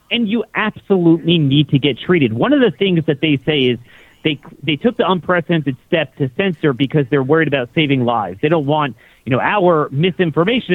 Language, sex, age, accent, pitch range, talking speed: English, male, 40-59, American, 140-180 Hz, 200 wpm